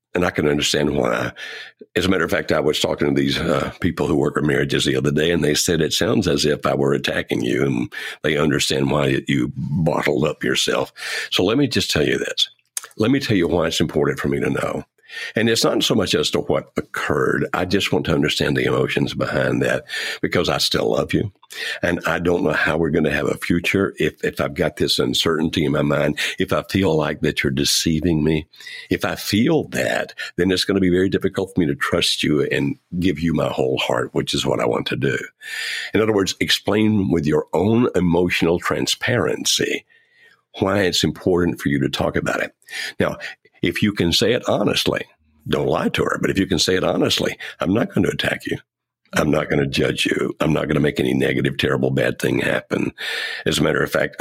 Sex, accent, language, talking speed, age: male, American, English, 225 wpm, 60-79